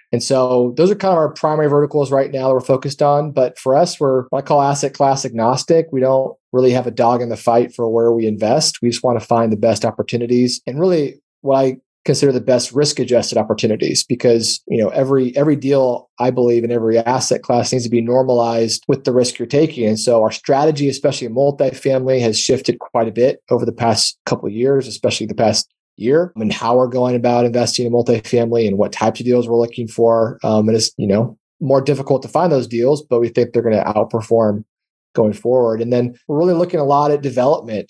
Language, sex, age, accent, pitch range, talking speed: English, male, 30-49, American, 115-130 Hz, 225 wpm